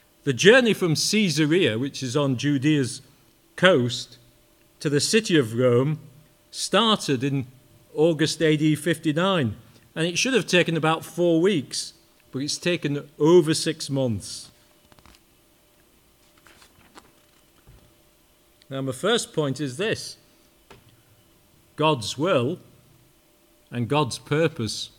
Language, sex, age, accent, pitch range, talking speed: English, male, 40-59, British, 120-160 Hz, 105 wpm